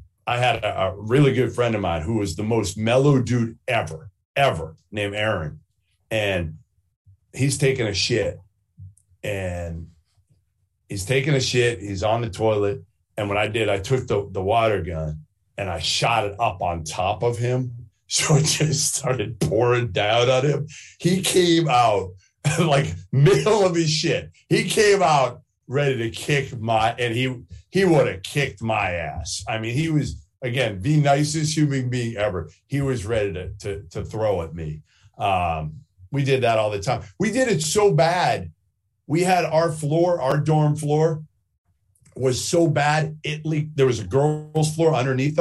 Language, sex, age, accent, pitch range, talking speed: English, male, 40-59, American, 100-150 Hz, 175 wpm